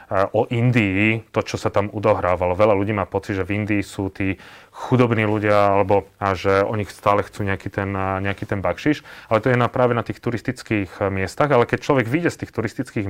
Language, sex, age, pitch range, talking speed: Slovak, male, 30-49, 100-115 Hz, 210 wpm